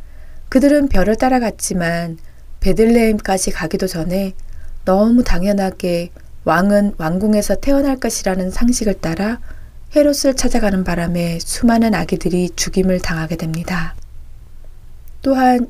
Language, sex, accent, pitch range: Korean, female, native, 175-225 Hz